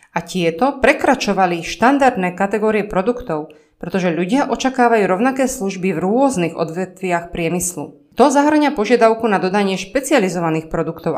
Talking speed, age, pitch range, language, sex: 120 wpm, 20-39, 175-235 Hz, Slovak, female